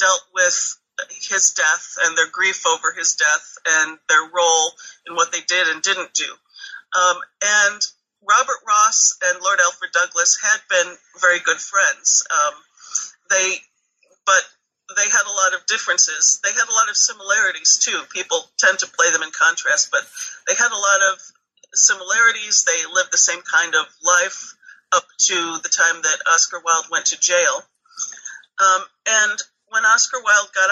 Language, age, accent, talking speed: English, 40-59, American, 170 wpm